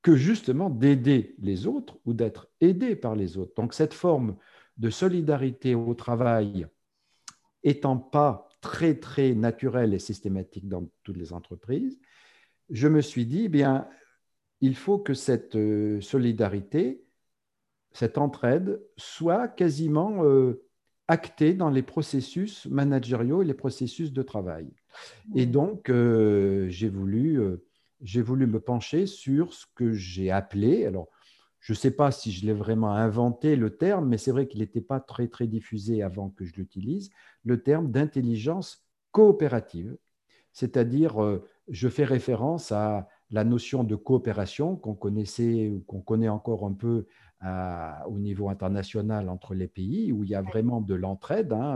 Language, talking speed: French, 150 wpm